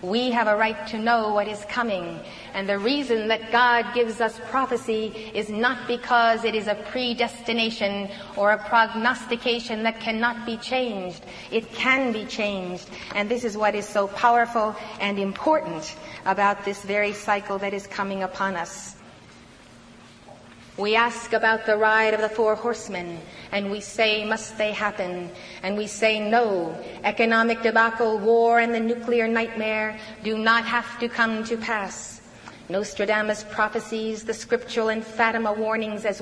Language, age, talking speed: English, 30-49, 155 wpm